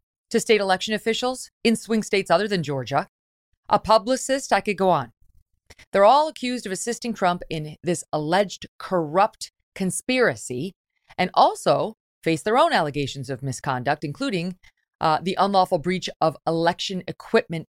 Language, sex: English, female